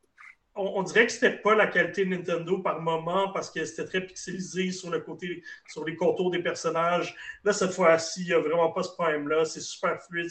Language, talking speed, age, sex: French, 220 wpm, 30-49, male